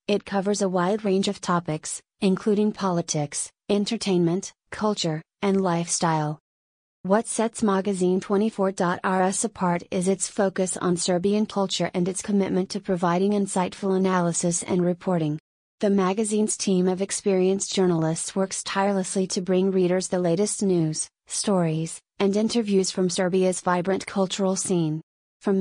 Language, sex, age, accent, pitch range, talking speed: English, female, 30-49, American, 180-200 Hz, 130 wpm